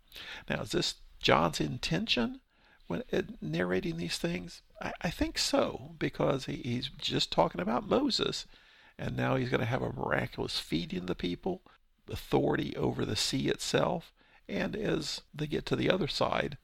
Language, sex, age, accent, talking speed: English, male, 50-69, American, 160 wpm